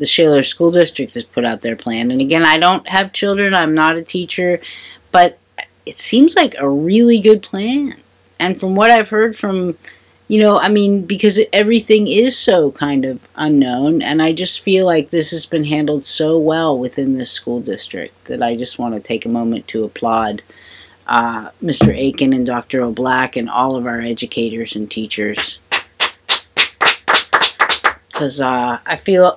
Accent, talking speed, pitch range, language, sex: American, 175 wpm, 120-185 Hz, English, female